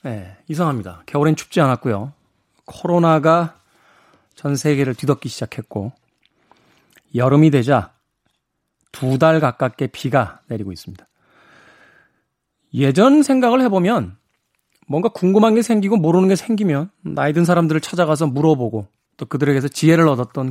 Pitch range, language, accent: 135-210 Hz, Korean, native